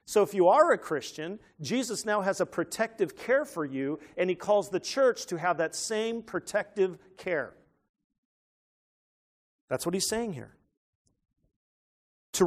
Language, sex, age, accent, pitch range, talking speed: English, male, 50-69, American, 170-220 Hz, 150 wpm